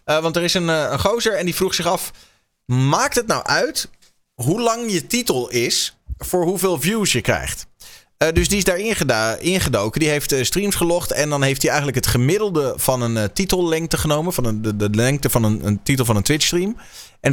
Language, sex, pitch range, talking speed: Dutch, male, 130-190 Hz, 225 wpm